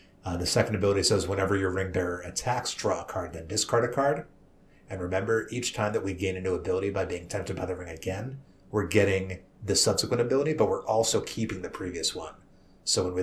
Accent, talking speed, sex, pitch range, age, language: American, 220 wpm, male, 90-110 Hz, 30-49, English